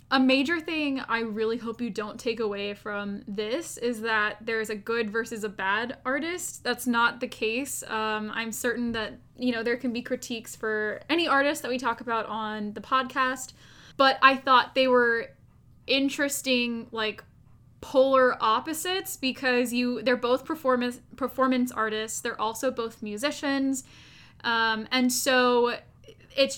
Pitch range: 220-255 Hz